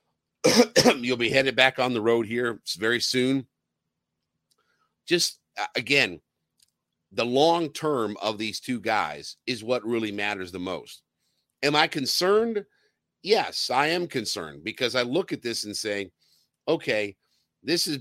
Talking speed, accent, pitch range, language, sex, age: 140 wpm, American, 105-135 Hz, English, male, 50-69